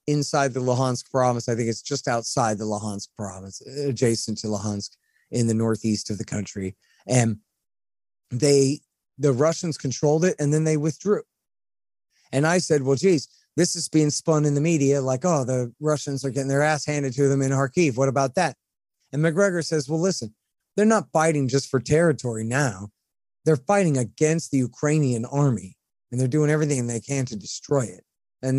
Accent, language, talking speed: American, English, 185 wpm